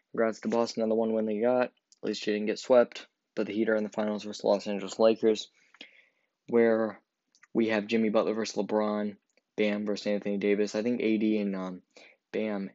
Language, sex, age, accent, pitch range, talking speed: English, male, 10-29, American, 105-115 Hz, 200 wpm